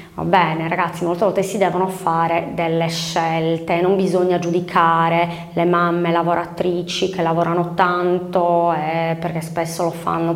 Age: 20-39